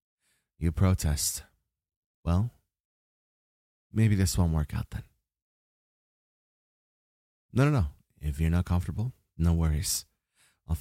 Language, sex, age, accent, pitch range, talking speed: English, male, 30-49, American, 75-90 Hz, 105 wpm